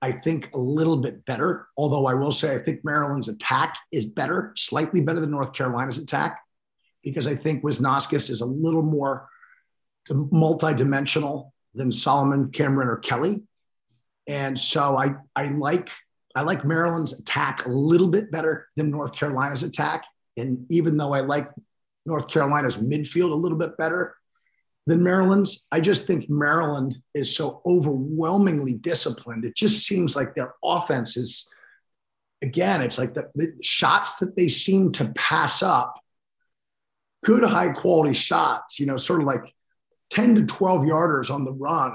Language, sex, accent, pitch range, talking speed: English, male, American, 135-175 Hz, 155 wpm